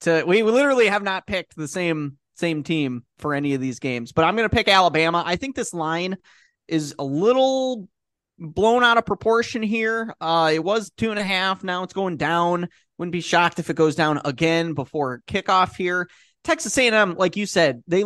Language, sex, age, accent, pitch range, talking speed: English, male, 20-39, American, 155-185 Hz, 205 wpm